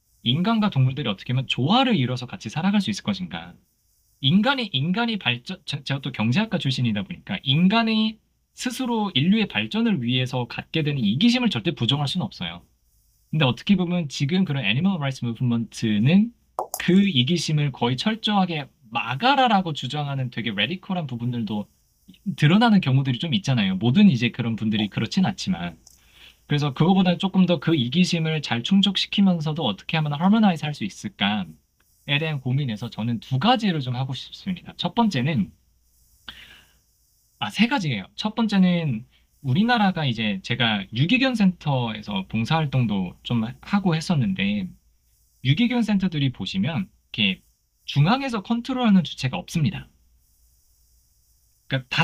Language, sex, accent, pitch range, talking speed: English, male, Korean, 120-195 Hz, 120 wpm